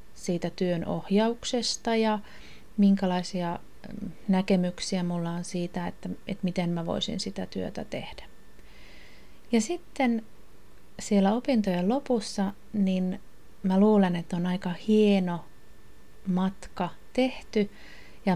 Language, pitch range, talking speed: Finnish, 175-205 Hz, 105 wpm